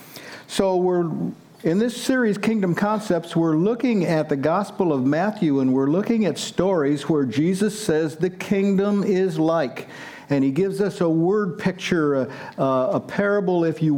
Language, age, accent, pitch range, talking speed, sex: English, 50-69, American, 150-200 Hz, 165 wpm, male